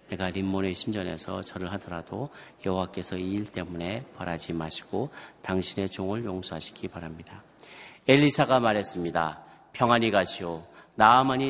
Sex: male